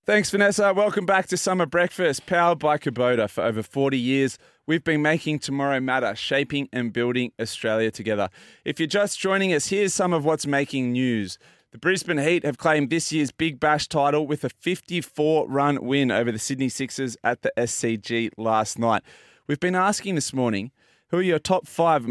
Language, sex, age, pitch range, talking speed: English, male, 20-39, 120-165 Hz, 185 wpm